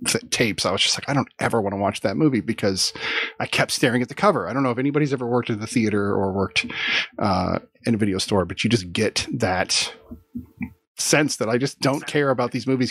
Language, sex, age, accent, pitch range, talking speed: English, male, 30-49, American, 110-140 Hz, 235 wpm